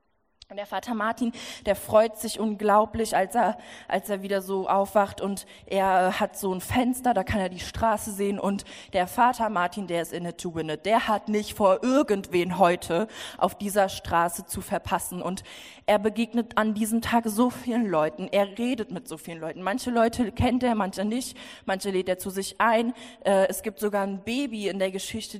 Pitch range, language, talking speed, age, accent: 190-245 Hz, German, 190 wpm, 20-39, German